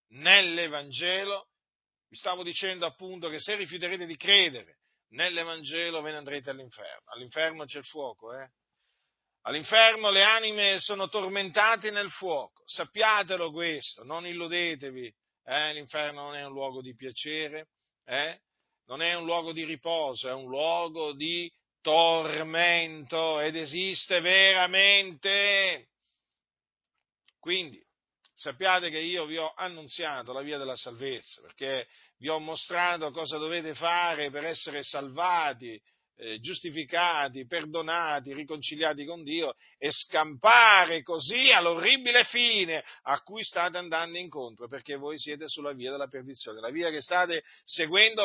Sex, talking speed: male, 130 wpm